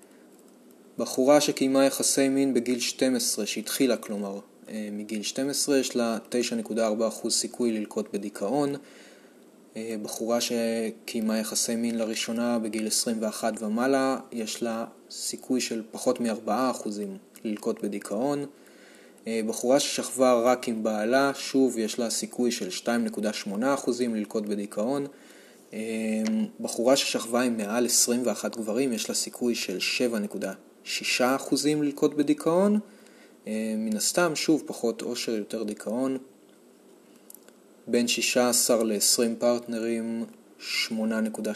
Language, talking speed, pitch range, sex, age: Hebrew, 105 wpm, 110-130 Hz, male, 20-39